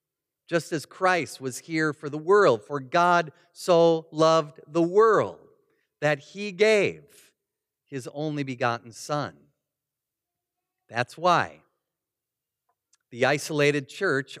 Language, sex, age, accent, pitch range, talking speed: English, male, 40-59, American, 140-175 Hz, 110 wpm